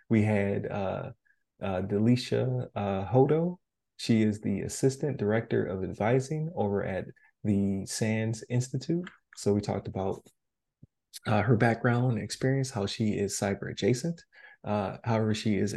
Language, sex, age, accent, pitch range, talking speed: English, male, 20-39, American, 105-135 Hz, 135 wpm